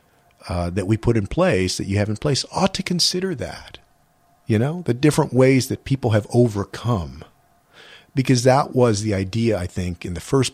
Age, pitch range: 50-69, 90-120 Hz